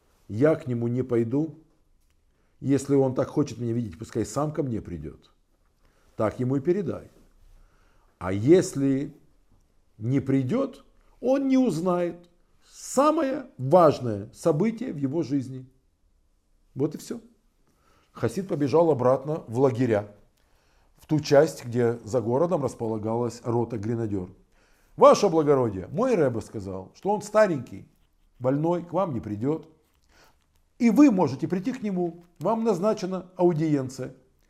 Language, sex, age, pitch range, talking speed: Russian, male, 50-69, 110-165 Hz, 125 wpm